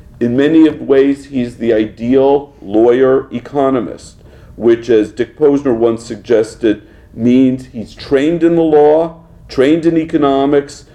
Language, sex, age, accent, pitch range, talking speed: English, male, 50-69, American, 110-150 Hz, 135 wpm